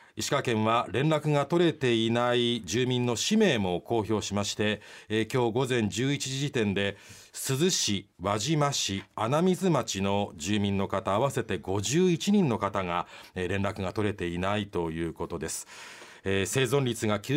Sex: male